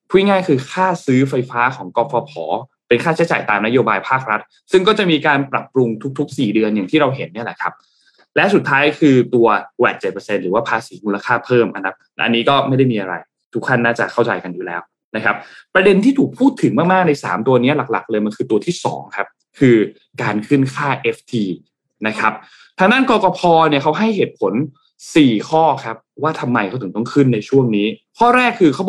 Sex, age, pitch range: male, 20-39, 115-150 Hz